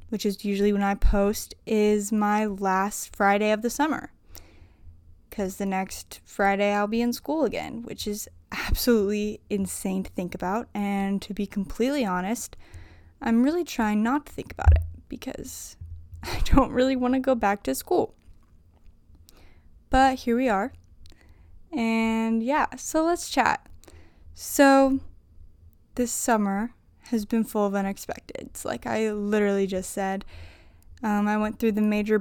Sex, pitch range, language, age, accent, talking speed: female, 170-230 Hz, English, 10-29, American, 150 wpm